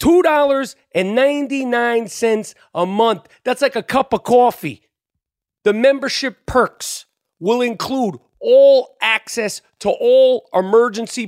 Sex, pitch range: male, 215-275 Hz